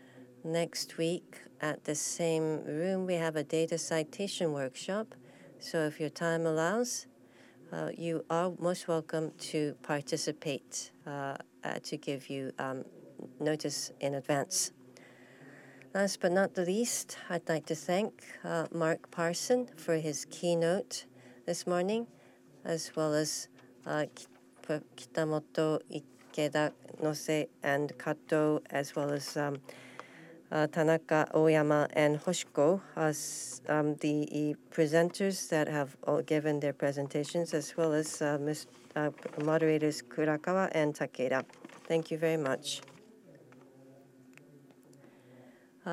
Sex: female